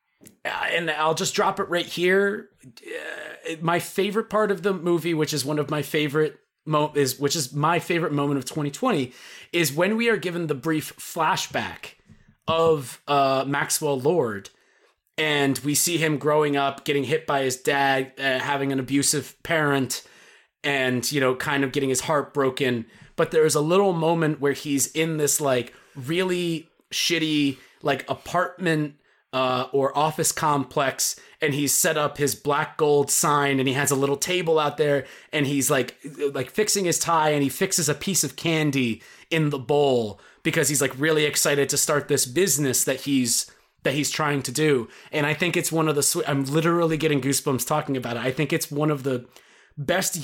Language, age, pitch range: English, 30-49, 140-165 Hz